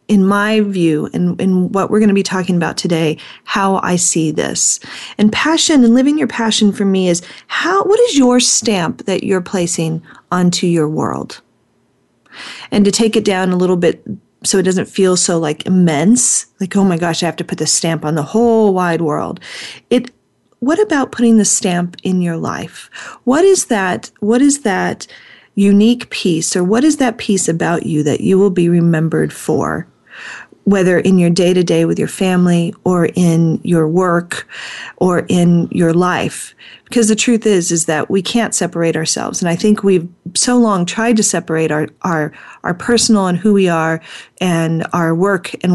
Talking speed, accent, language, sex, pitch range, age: 190 wpm, American, English, female, 170-215 Hz, 40-59